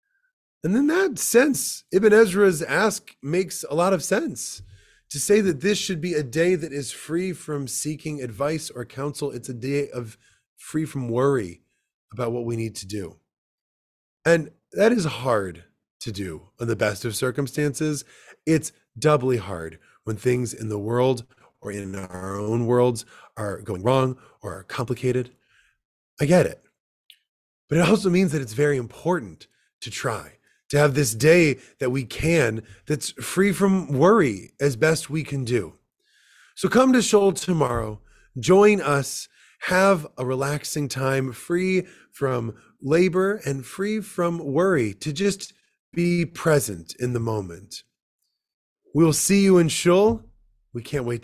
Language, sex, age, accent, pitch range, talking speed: English, male, 30-49, American, 120-175 Hz, 155 wpm